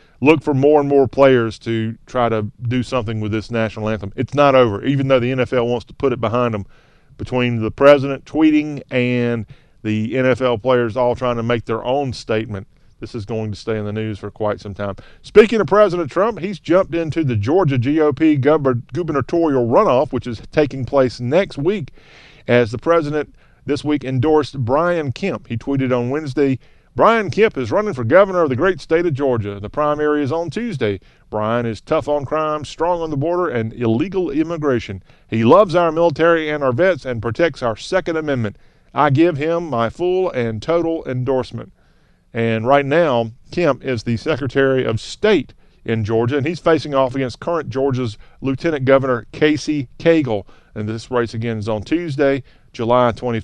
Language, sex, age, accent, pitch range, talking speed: English, male, 40-59, American, 115-155 Hz, 185 wpm